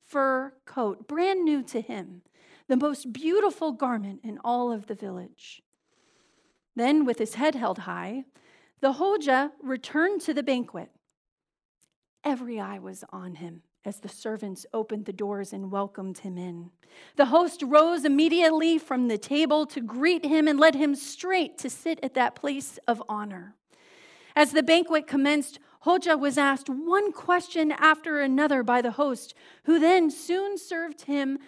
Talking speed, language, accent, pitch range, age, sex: 155 wpm, English, American, 235-325 Hz, 40-59, female